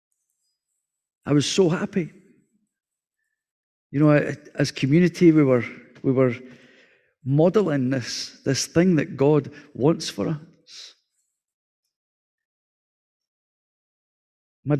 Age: 40-59